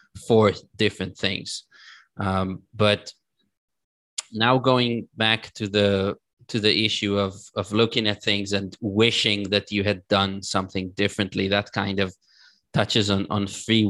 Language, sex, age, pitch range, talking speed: English, male, 20-39, 100-110 Hz, 145 wpm